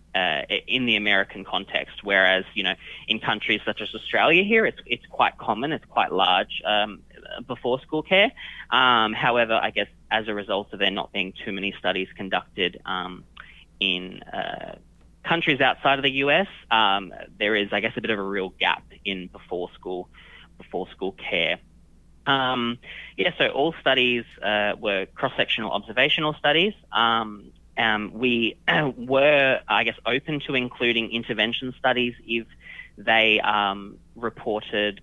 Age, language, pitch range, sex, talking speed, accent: 20-39, English, 105-125 Hz, male, 155 wpm, Australian